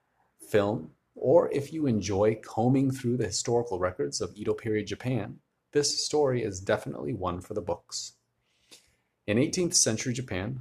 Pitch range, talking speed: 105-130 Hz, 145 wpm